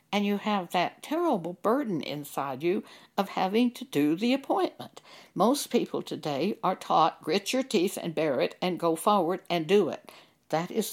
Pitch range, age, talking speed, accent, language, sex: 175-245 Hz, 60-79, 180 wpm, American, English, female